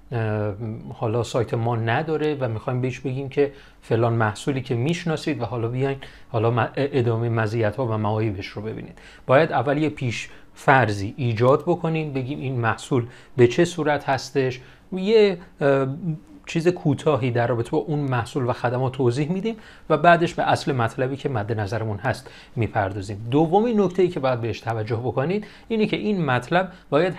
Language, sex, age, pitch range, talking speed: Persian, male, 30-49, 115-155 Hz, 160 wpm